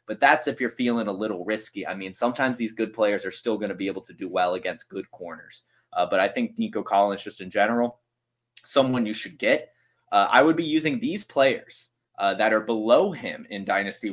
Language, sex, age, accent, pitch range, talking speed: English, male, 20-39, American, 110-130 Hz, 225 wpm